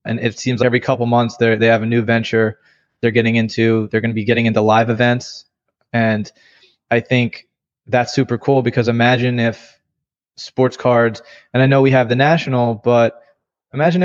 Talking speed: 185 wpm